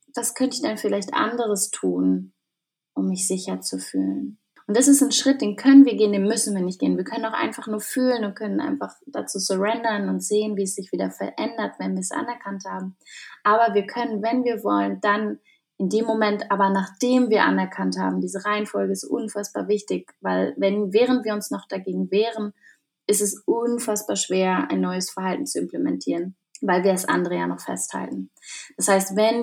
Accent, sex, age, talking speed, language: German, female, 20-39, 195 wpm, German